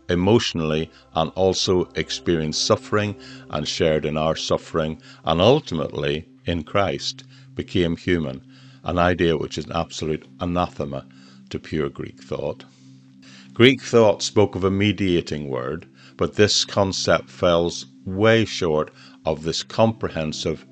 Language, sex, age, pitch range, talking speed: English, male, 50-69, 65-95 Hz, 125 wpm